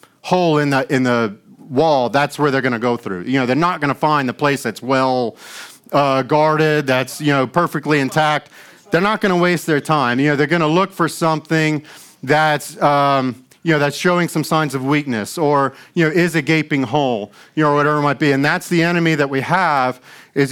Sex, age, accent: male, 40-59, American